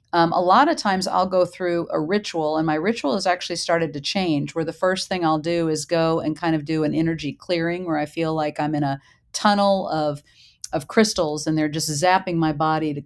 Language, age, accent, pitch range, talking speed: English, 50-69, American, 155-175 Hz, 235 wpm